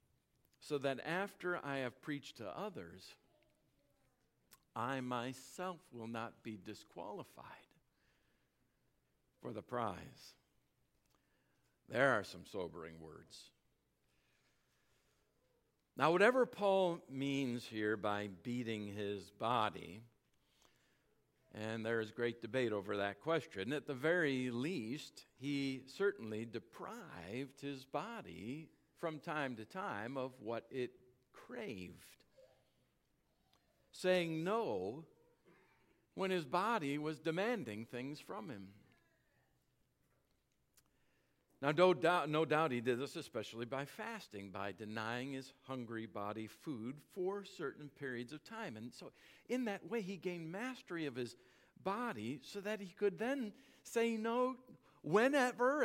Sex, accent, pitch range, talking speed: male, American, 115-185 Hz, 115 wpm